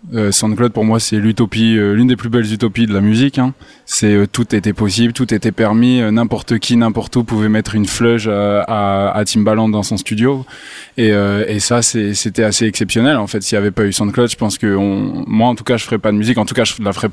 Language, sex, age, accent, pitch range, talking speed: French, male, 20-39, French, 105-120 Hz, 265 wpm